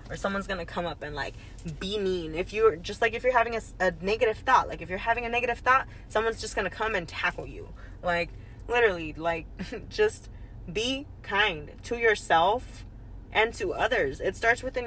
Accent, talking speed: American, 195 wpm